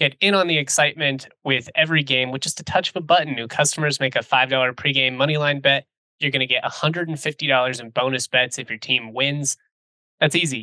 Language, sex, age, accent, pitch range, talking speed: English, male, 20-39, American, 130-150 Hz, 210 wpm